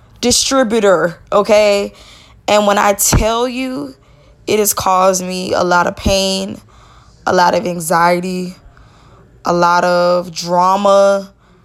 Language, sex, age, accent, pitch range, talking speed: English, female, 20-39, American, 185-235 Hz, 120 wpm